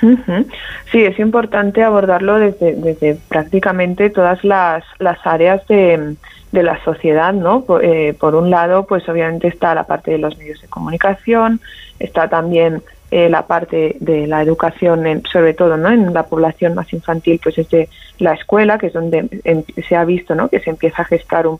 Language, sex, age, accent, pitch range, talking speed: Spanish, female, 30-49, Spanish, 165-185 Hz, 180 wpm